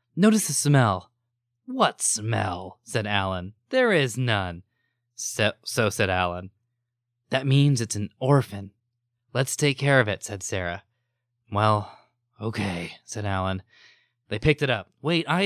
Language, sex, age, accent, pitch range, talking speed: English, male, 20-39, American, 100-125 Hz, 140 wpm